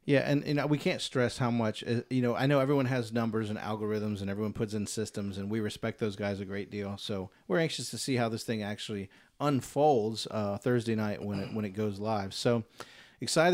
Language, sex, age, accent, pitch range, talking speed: English, male, 40-59, American, 110-140 Hz, 225 wpm